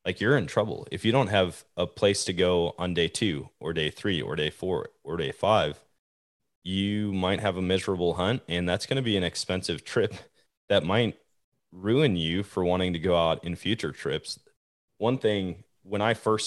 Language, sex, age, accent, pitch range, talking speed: English, male, 20-39, American, 80-95 Hz, 200 wpm